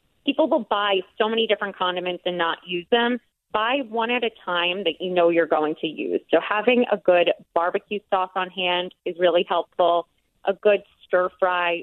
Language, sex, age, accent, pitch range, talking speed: English, female, 30-49, American, 180-250 Hz, 195 wpm